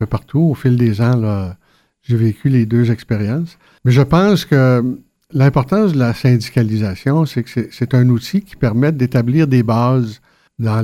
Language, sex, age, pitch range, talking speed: French, male, 60-79, 115-140 Hz, 170 wpm